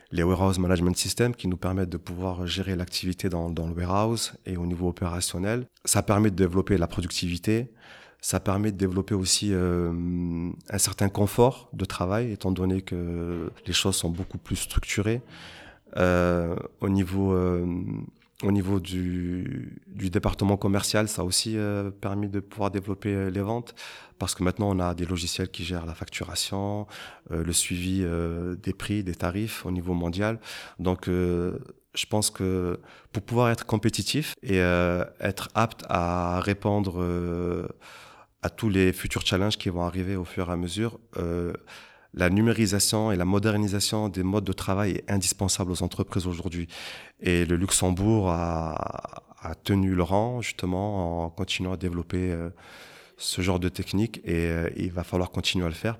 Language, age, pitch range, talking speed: English, 30-49, 90-100 Hz, 165 wpm